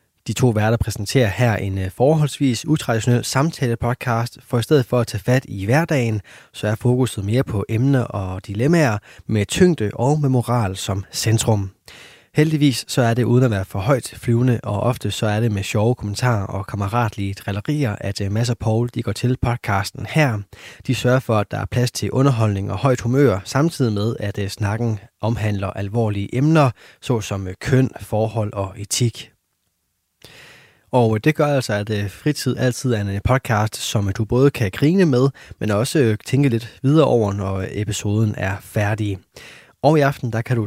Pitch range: 100-125 Hz